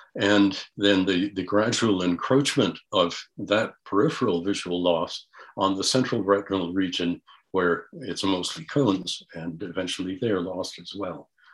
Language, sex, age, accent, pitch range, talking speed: English, male, 60-79, American, 90-115 Hz, 135 wpm